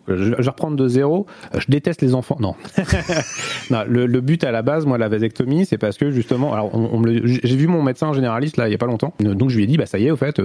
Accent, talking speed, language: French, 295 wpm, French